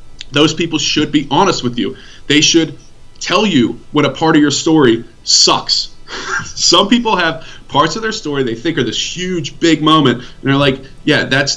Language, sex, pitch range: English, male, 120-150 Hz